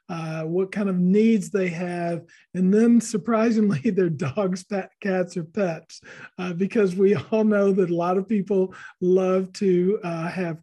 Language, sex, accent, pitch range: English, male, American, 180-210 Hz